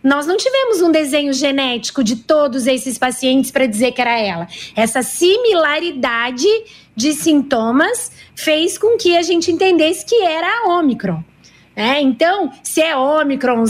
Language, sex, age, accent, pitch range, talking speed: Portuguese, female, 20-39, Brazilian, 245-295 Hz, 145 wpm